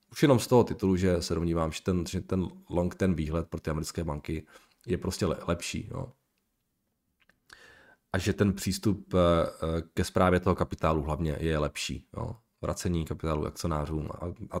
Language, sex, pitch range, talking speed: Czech, male, 85-110 Hz, 150 wpm